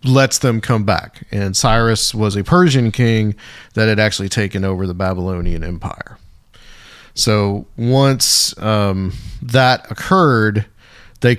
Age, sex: 40-59, male